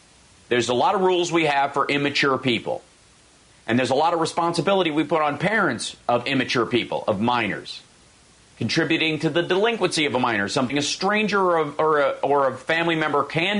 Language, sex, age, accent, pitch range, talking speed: English, male, 40-59, American, 120-160 Hz, 195 wpm